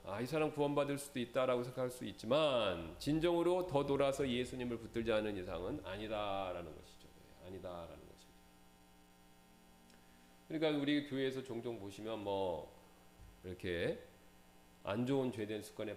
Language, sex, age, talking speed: English, male, 40-59, 115 wpm